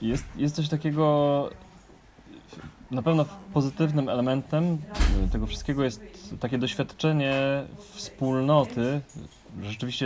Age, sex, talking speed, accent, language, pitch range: 20-39, male, 90 wpm, native, Polish, 105-135 Hz